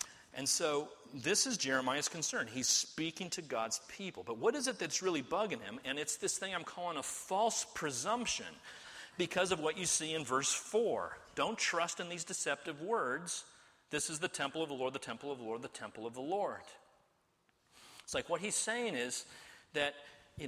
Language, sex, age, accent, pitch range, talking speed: English, male, 40-59, American, 130-200 Hz, 195 wpm